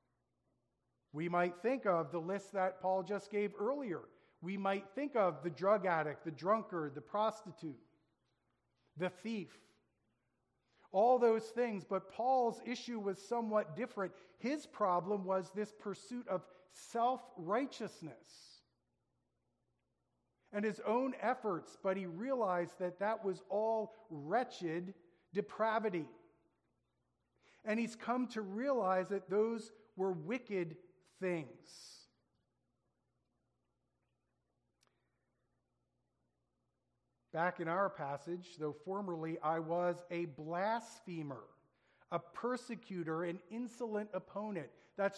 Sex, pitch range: male, 170-220 Hz